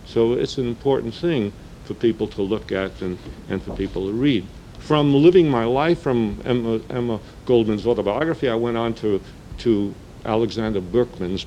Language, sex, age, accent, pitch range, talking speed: English, male, 50-69, American, 95-125 Hz, 165 wpm